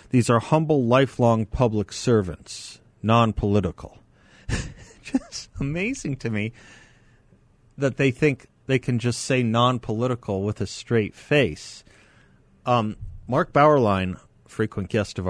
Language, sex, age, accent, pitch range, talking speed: English, male, 50-69, American, 105-130 Hz, 115 wpm